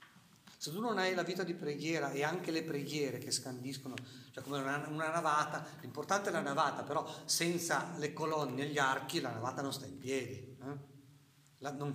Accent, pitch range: native, 130-155 Hz